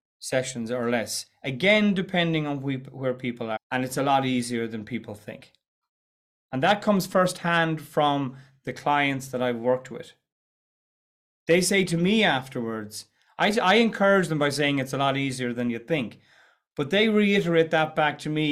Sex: male